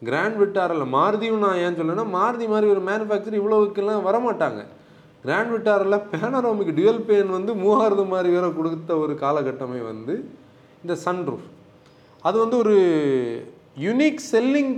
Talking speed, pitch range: 135 wpm, 145-210 Hz